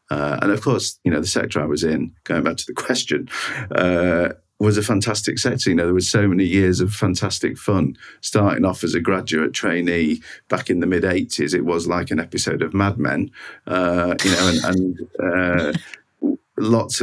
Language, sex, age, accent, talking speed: English, male, 50-69, British, 200 wpm